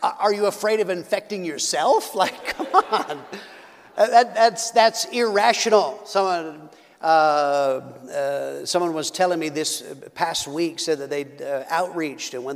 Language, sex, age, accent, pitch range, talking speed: English, male, 50-69, American, 155-235 Hz, 145 wpm